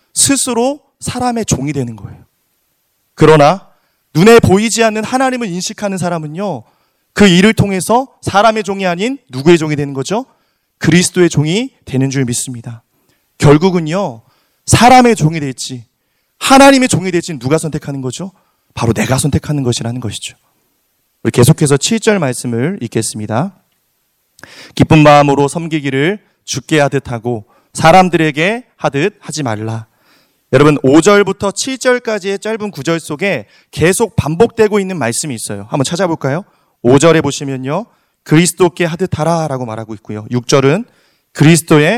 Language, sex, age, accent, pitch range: Korean, male, 30-49, native, 130-195 Hz